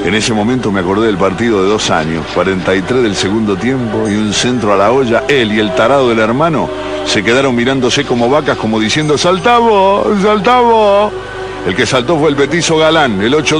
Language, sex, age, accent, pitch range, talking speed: Spanish, male, 60-79, Argentinian, 105-160 Hz, 195 wpm